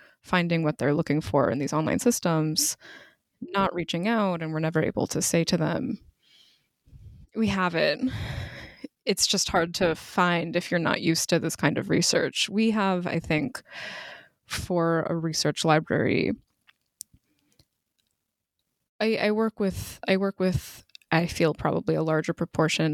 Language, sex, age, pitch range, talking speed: English, female, 20-39, 165-215 Hz, 150 wpm